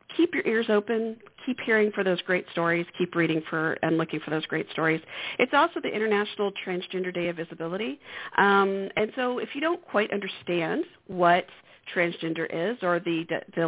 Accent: American